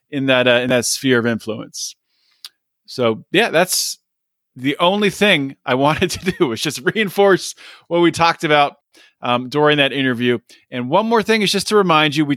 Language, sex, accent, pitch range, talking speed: English, male, American, 135-175 Hz, 185 wpm